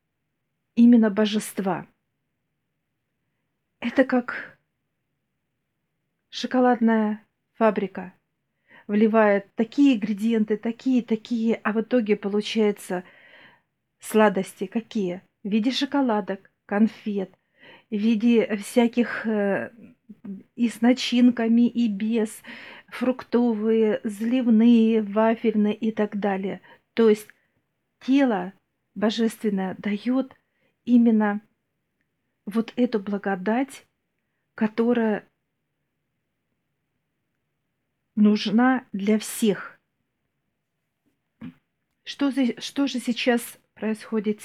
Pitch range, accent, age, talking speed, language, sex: 205-235 Hz, native, 40-59, 70 wpm, Russian, female